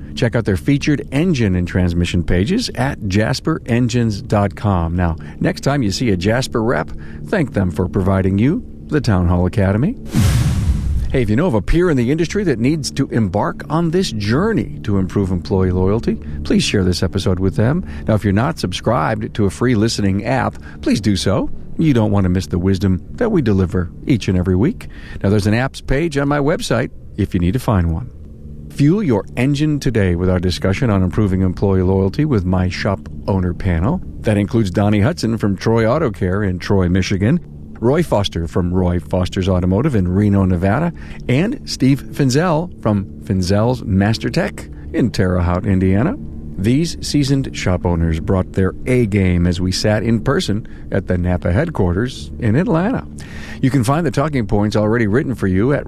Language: English